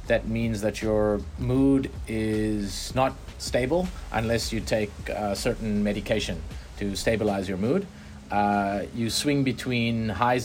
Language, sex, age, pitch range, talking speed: English, male, 30-49, 100-115 Hz, 130 wpm